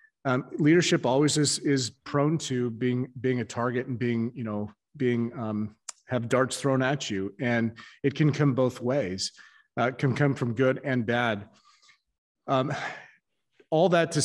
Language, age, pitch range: English, 30-49, 115-155 Hz